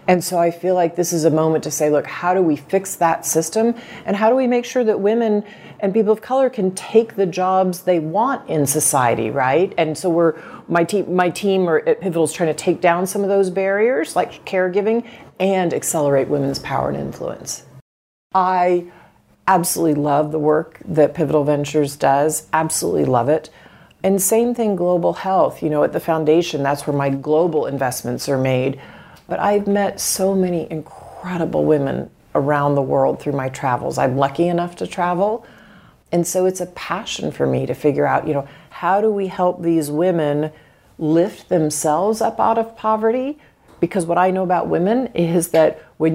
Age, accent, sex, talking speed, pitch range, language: 40-59, American, female, 190 wpm, 150-190 Hz, English